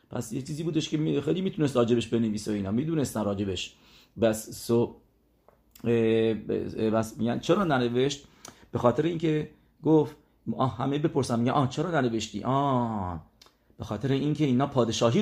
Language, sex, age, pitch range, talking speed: English, male, 40-59, 120-160 Hz, 125 wpm